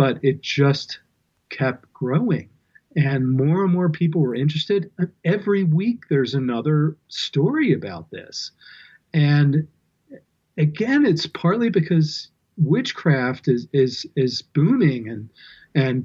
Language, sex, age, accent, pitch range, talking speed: English, male, 40-59, American, 120-155 Hz, 115 wpm